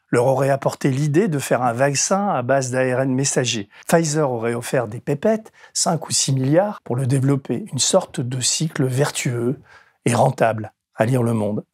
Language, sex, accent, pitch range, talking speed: French, male, French, 125-155 Hz, 180 wpm